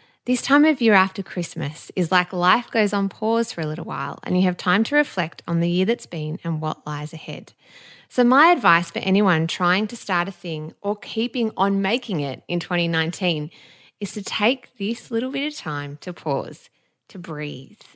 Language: English